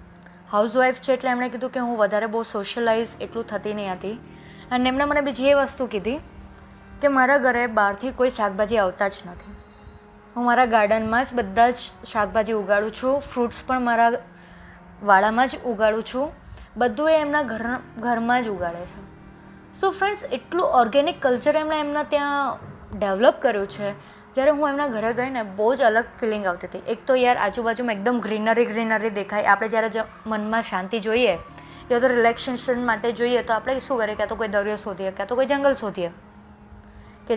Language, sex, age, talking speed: Gujarati, female, 20-39, 180 wpm